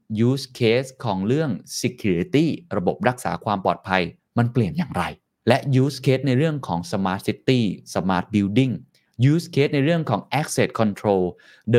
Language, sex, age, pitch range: Thai, male, 20-39, 95-130 Hz